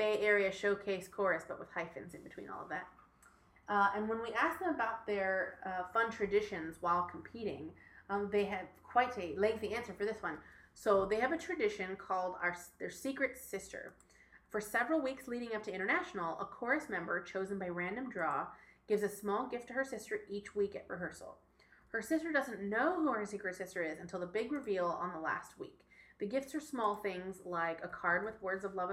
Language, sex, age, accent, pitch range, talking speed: English, female, 30-49, American, 185-235 Hz, 205 wpm